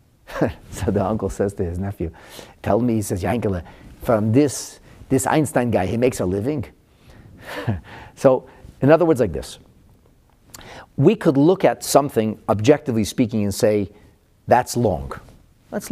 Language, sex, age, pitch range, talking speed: English, male, 40-59, 105-160 Hz, 145 wpm